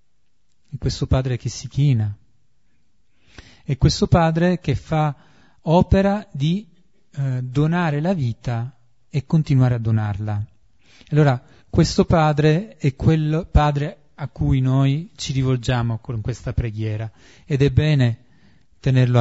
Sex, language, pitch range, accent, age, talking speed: male, Italian, 115-155 Hz, native, 30-49, 120 wpm